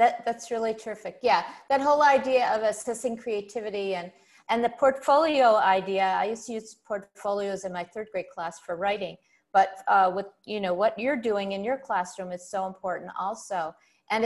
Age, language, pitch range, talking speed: 50-69, English, 185-230 Hz, 180 wpm